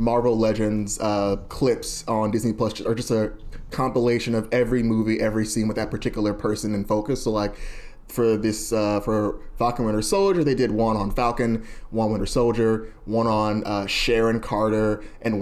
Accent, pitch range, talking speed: American, 110-125 Hz, 175 wpm